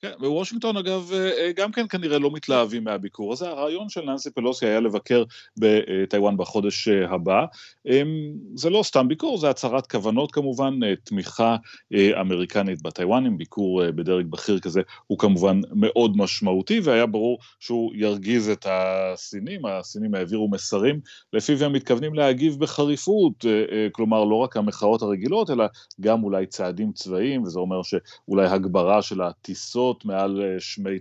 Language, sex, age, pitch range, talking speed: Hebrew, male, 30-49, 100-135 Hz, 135 wpm